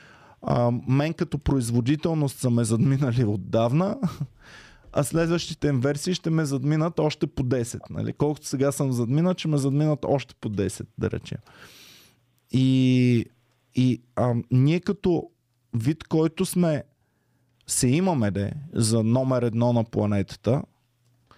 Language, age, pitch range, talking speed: Bulgarian, 20-39, 120-145 Hz, 130 wpm